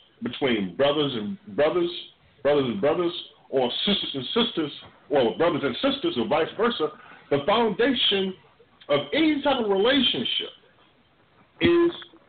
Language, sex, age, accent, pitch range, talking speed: English, male, 50-69, American, 155-255 Hz, 125 wpm